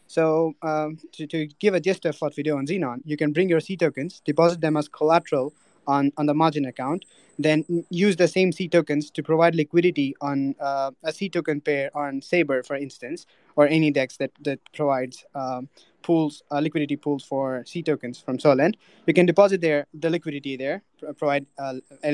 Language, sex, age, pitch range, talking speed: English, male, 20-39, 140-170 Hz, 195 wpm